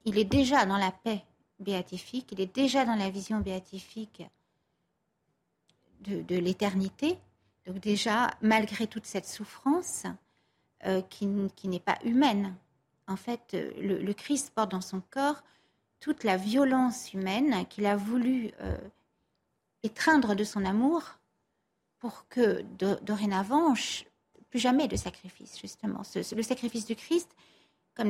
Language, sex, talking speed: French, female, 140 wpm